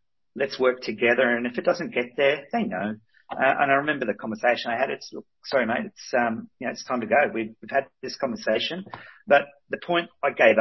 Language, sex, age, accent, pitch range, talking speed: English, male, 40-59, Australian, 110-150 Hz, 230 wpm